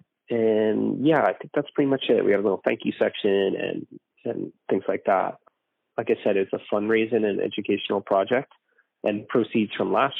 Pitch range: 100-110 Hz